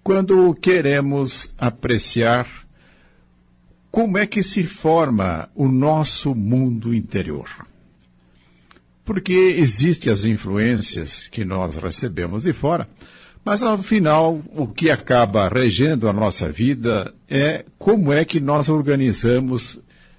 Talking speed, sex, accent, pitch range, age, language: 110 wpm, male, Brazilian, 105-155 Hz, 60-79, Portuguese